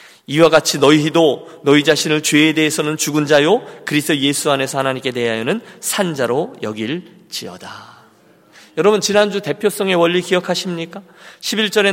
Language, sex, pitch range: Korean, male, 140-180 Hz